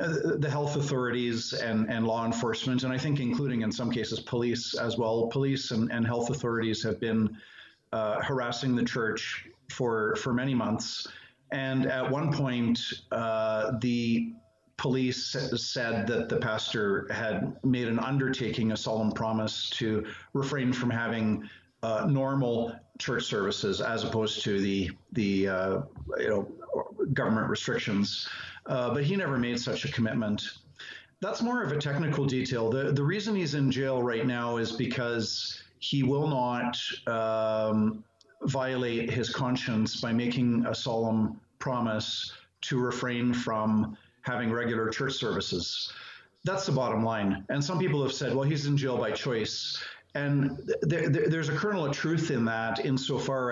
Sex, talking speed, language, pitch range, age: male, 150 wpm, English, 115-135 Hz, 50-69